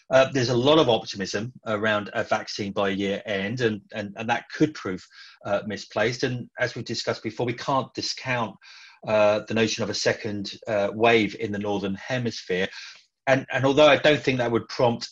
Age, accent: 30-49, British